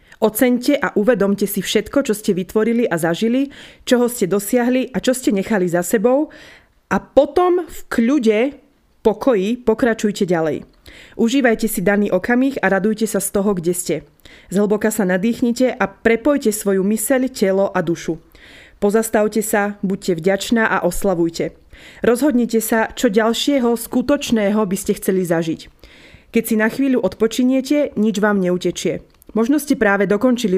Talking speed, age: 145 wpm, 20-39